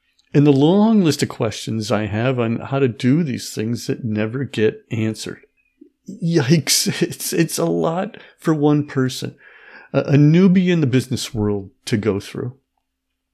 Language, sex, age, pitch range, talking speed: English, male, 50-69, 110-150 Hz, 160 wpm